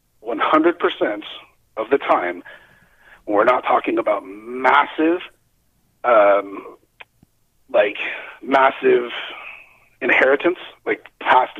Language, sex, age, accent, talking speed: English, male, 40-59, American, 90 wpm